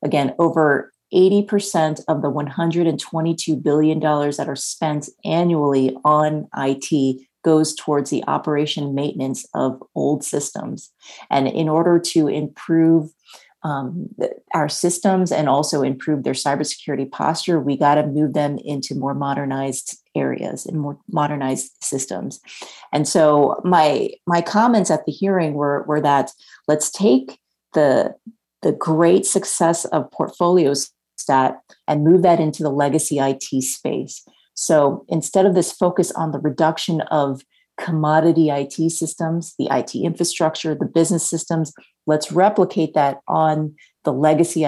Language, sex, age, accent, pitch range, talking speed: English, female, 30-49, American, 145-165 Hz, 135 wpm